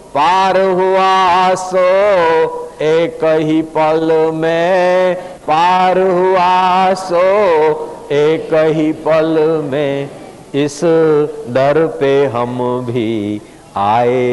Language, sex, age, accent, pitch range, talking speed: Hindi, male, 50-69, native, 140-195 Hz, 85 wpm